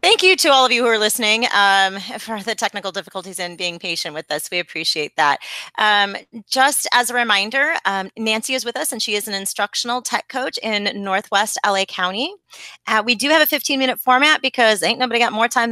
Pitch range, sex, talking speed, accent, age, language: 195-255 Hz, female, 220 wpm, American, 30-49, English